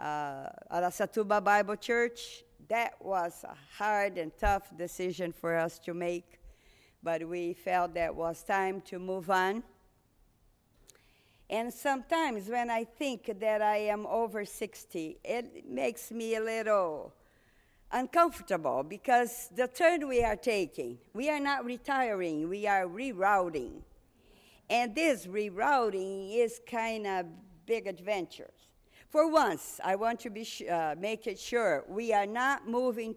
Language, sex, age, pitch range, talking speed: English, female, 50-69, 180-235 Hz, 135 wpm